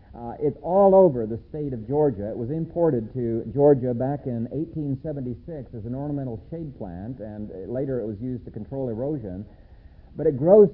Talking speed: 180 wpm